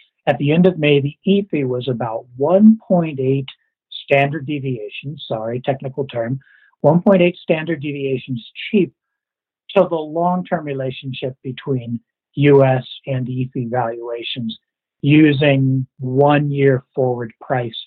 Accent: American